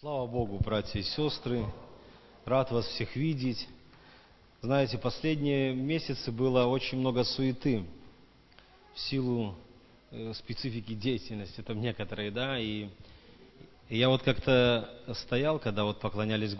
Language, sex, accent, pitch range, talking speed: Russian, male, native, 115-140 Hz, 110 wpm